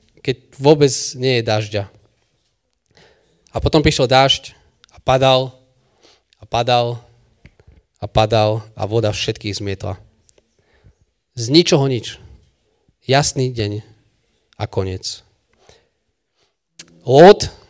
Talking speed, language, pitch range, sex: 90 wpm, Slovak, 115-150 Hz, male